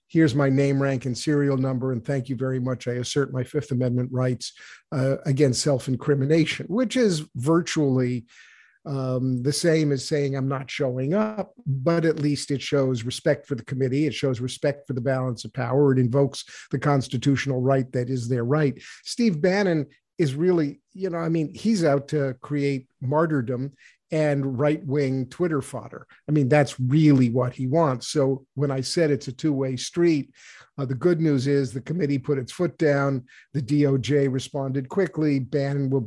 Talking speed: 180 wpm